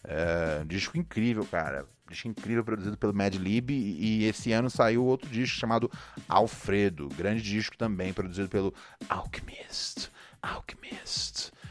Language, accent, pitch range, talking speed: Portuguese, Brazilian, 95-130 Hz, 125 wpm